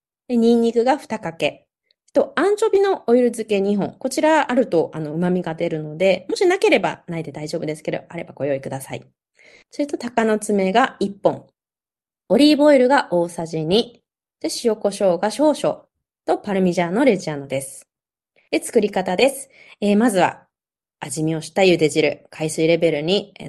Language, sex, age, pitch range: Japanese, female, 20-39, 160-240 Hz